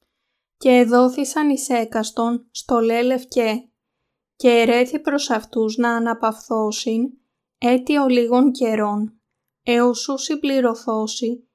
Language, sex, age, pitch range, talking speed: Greek, female, 20-39, 225-255 Hz, 90 wpm